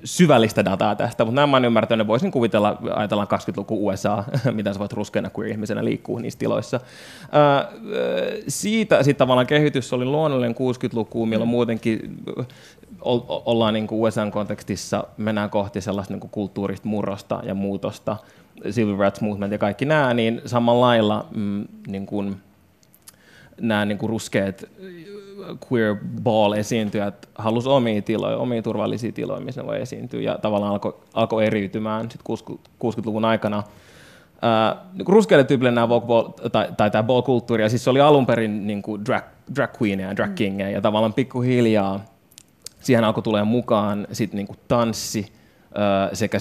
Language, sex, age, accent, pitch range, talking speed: Finnish, male, 20-39, native, 100-120 Hz, 140 wpm